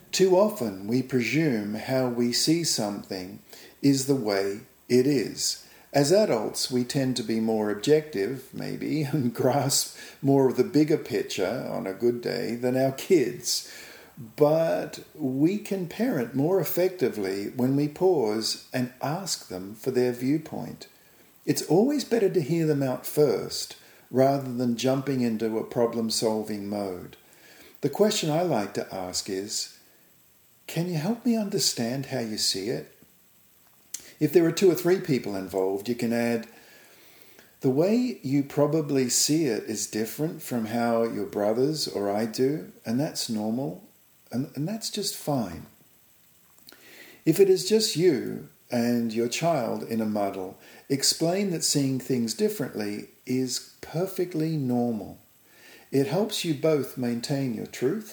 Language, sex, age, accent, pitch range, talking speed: English, male, 50-69, Australian, 115-160 Hz, 145 wpm